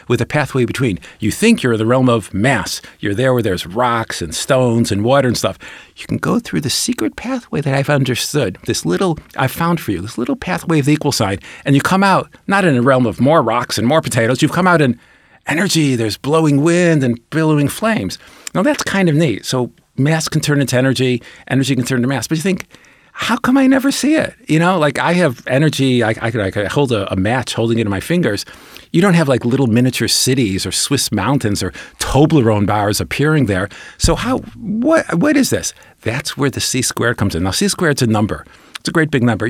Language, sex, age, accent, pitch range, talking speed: English, male, 50-69, American, 110-150 Hz, 235 wpm